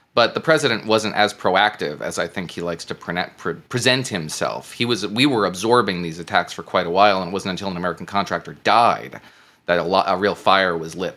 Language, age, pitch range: English, 30-49, 100-130 Hz